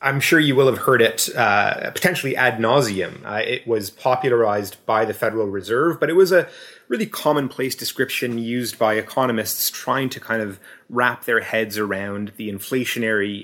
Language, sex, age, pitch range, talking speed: English, male, 30-49, 100-125 Hz, 175 wpm